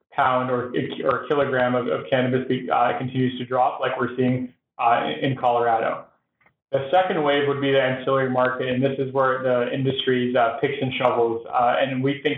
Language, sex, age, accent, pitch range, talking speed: English, male, 20-39, American, 125-135 Hz, 195 wpm